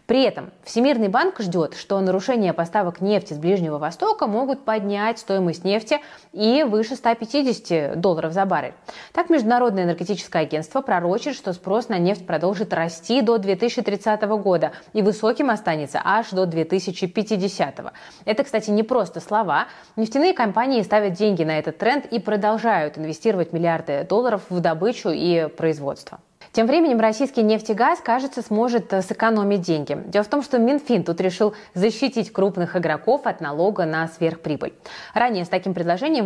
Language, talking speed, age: Russian, 145 wpm, 20-39